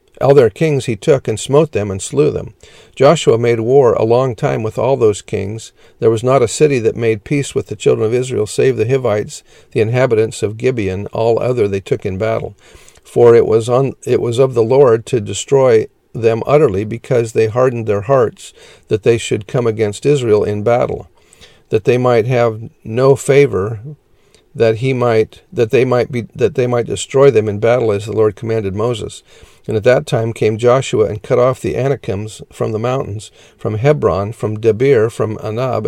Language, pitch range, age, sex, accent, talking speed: English, 110-130 Hz, 50-69, male, American, 195 wpm